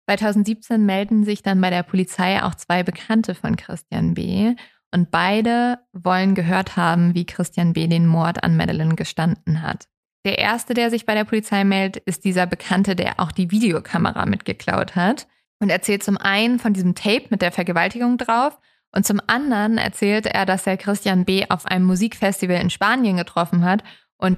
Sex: female